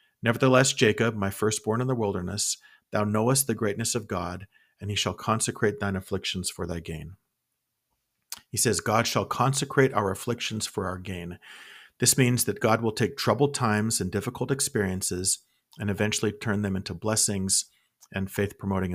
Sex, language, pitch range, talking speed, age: male, English, 100-125 Hz, 160 wpm, 40-59